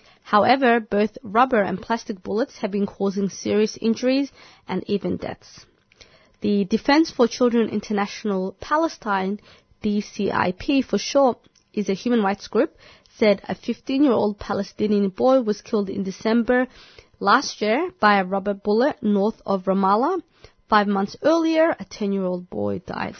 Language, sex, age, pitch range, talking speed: English, female, 20-39, 190-225 Hz, 135 wpm